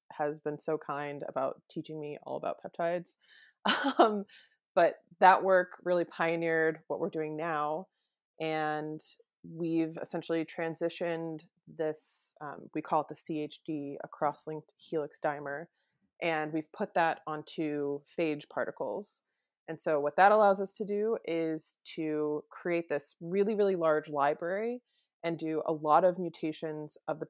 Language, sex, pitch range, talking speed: English, female, 150-175 Hz, 145 wpm